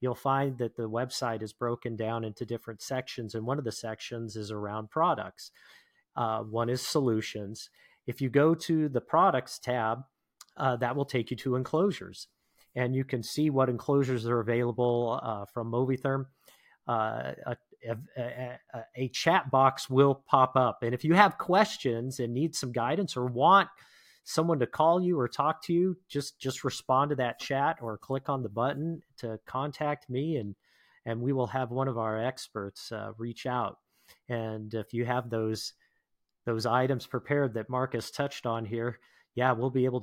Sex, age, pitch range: male, 40-59, 110-135 Hz